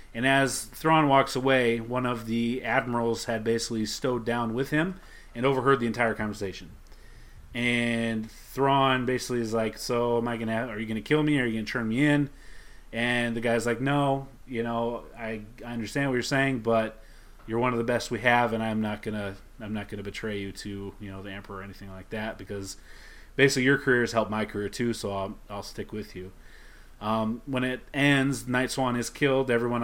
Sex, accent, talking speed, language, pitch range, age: male, American, 220 wpm, English, 110-130 Hz, 30-49